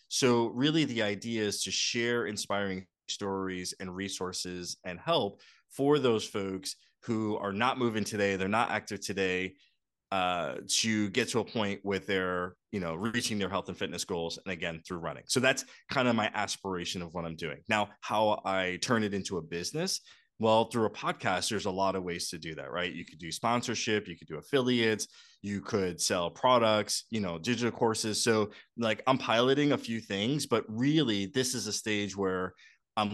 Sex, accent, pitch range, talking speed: male, American, 95-115 Hz, 190 wpm